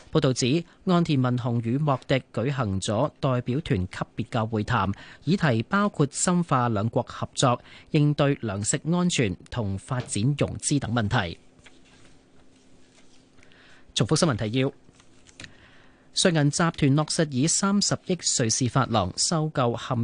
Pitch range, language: 115-155 Hz, Chinese